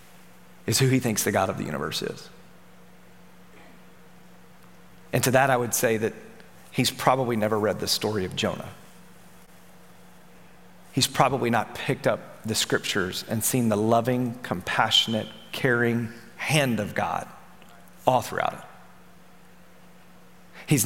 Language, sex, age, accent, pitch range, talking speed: English, male, 40-59, American, 120-155 Hz, 130 wpm